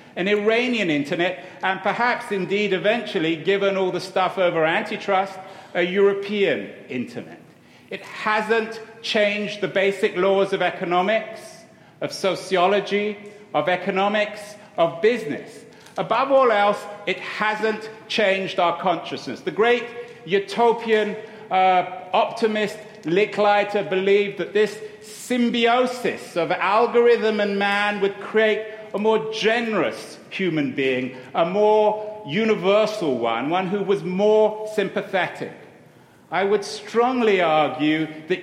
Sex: male